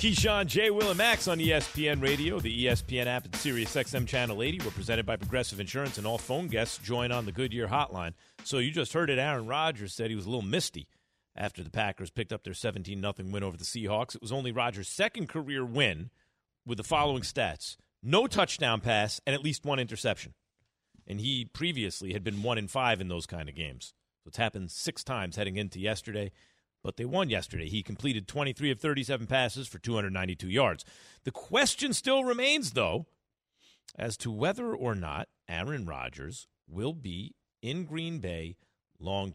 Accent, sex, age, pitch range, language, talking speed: American, male, 40-59, 100-145 Hz, English, 190 wpm